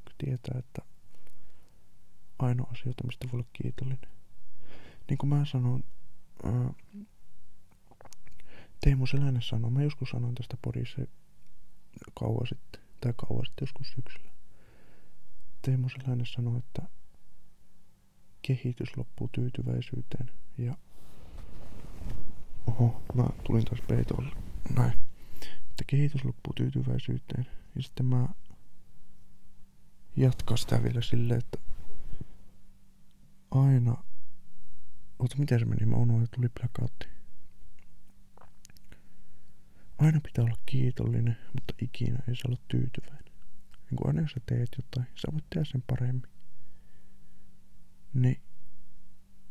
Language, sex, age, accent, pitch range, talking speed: Finnish, male, 20-39, native, 100-130 Hz, 100 wpm